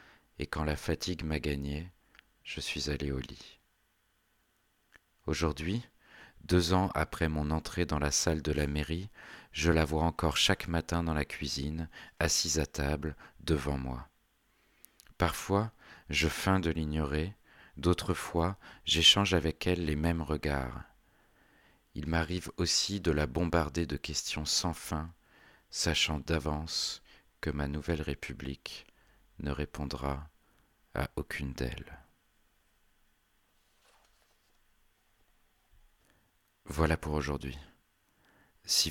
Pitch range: 75-90 Hz